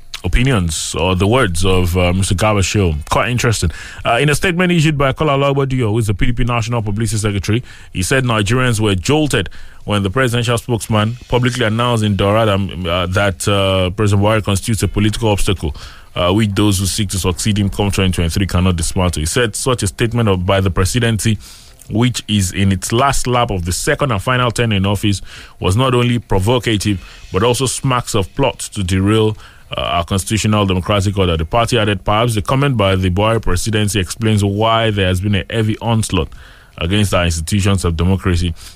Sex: male